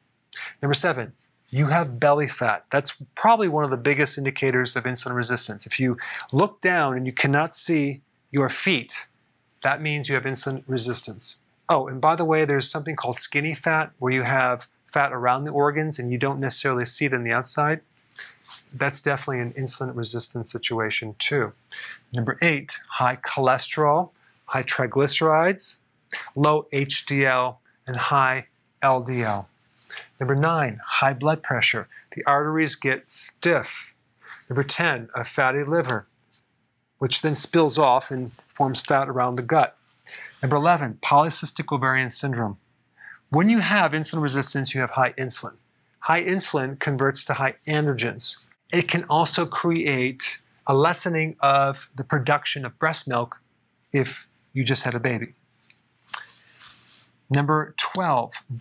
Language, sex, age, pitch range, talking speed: English, male, 30-49, 125-150 Hz, 145 wpm